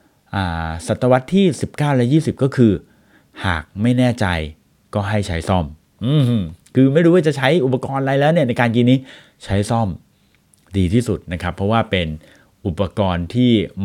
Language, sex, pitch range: Thai, male, 95-145 Hz